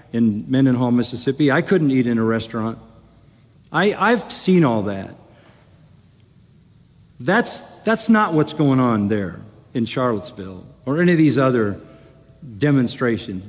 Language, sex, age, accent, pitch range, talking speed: English, male, 50-69, American, 120-160 Hz, 130 wpm